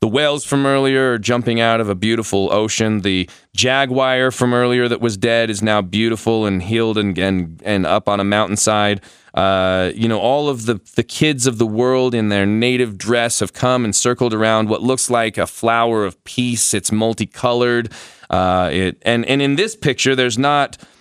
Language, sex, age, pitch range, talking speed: English, male, 20-39, 110-130 Hz, 195 wpm